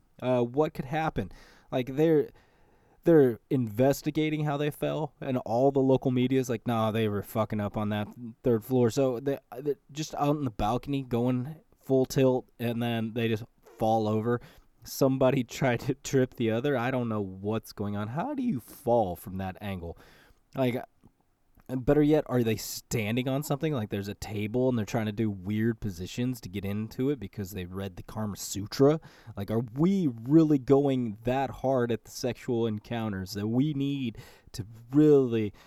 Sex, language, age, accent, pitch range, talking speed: male, English, 20-39, American, 110-135 Hz, 180 wpm